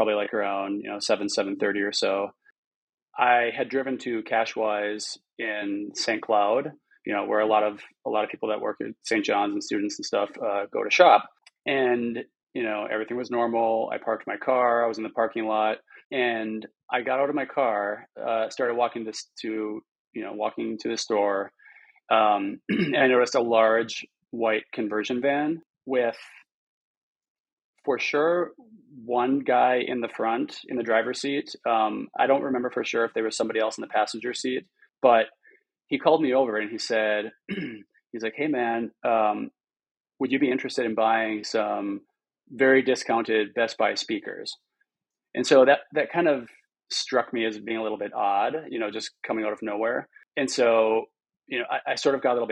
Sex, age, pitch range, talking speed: male, 30-49, 110-125 Hz, 195 wpm